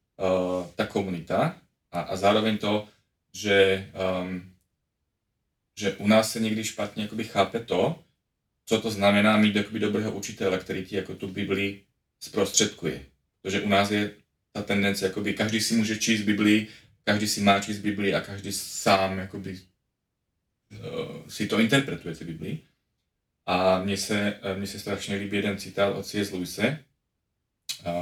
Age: 30-49